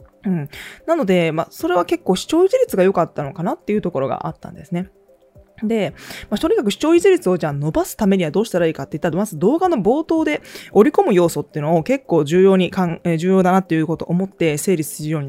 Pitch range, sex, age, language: 155-215 Hz, female, 20-39, Japanese